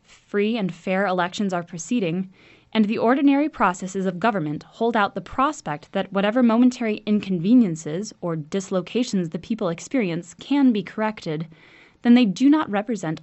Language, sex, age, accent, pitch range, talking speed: English, female, 10-29, American, 170-235 Hz, 150 wpm